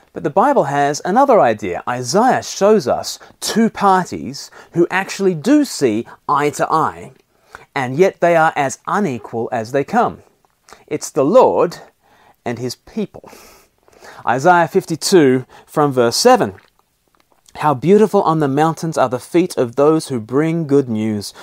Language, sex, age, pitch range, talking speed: English, male, 30-49, 125-175 Hz, 145 wpm